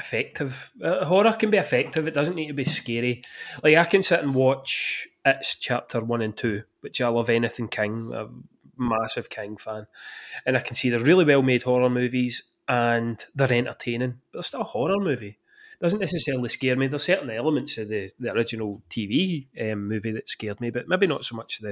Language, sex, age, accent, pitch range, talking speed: English, male, 30-49, British, 115-155 Hz, 205 wpm